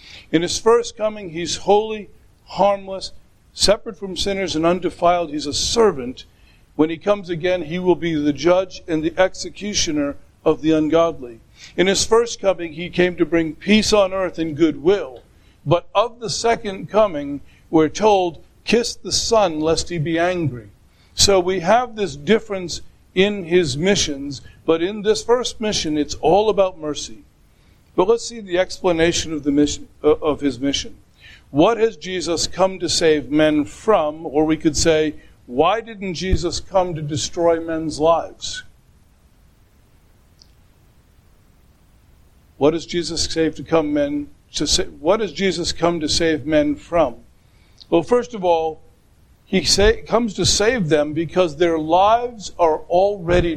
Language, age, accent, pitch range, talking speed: English, 50-69, American, 150-195 Hz, 155 wpm